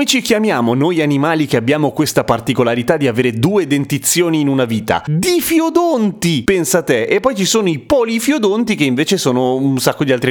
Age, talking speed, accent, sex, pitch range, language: 30-49, 185 wpm, native, male, 115-155 Hz, Italian